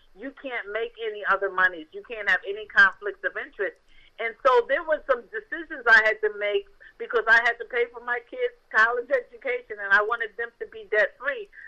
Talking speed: 205 wpm